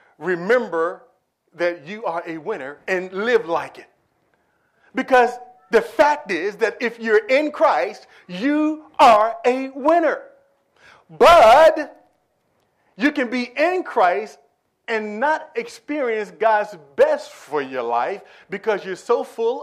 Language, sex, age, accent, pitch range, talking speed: English, male, 40-59, American, 205-275 Hz, 125 wpm